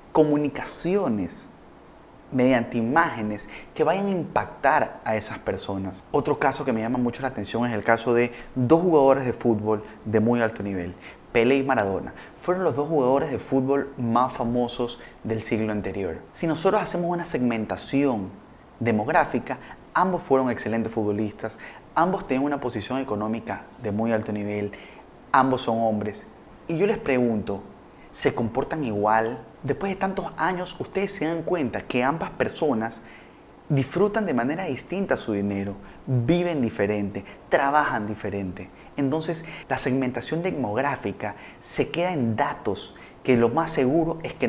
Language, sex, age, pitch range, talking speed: Spanish, male, 30-49, 110-145 Hz, 145 wpm